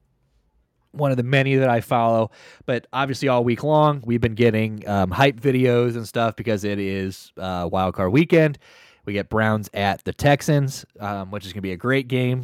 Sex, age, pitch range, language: male, 20-39, 95-125 Hz, English